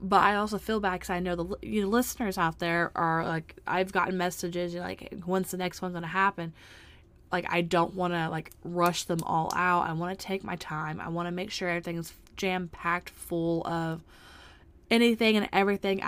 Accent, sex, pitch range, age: American, female, 170-210 Hz, 20-39